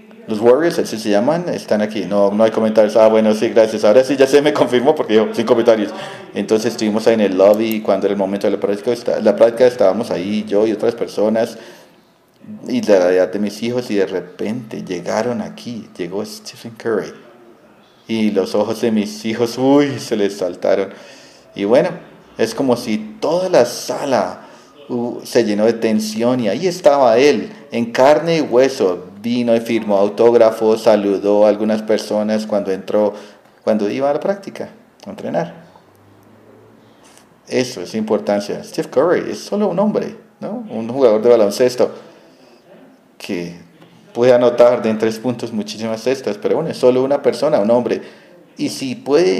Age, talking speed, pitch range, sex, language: 40-59, 175 wpm, 105-130 Hz, male, English